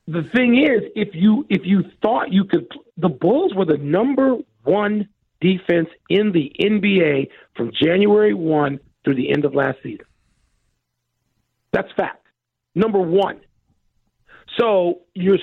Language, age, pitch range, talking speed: English, 50-69, 165-220 Hz, 140 wpm